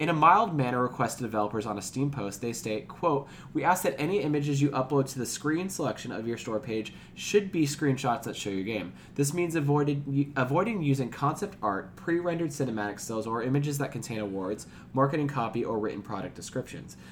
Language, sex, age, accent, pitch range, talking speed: English, male, 20-39, American, 110-145 Hz, 205 wpm